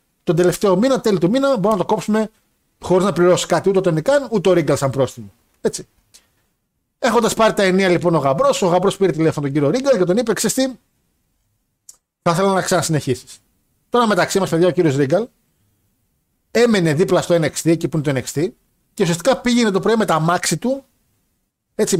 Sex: male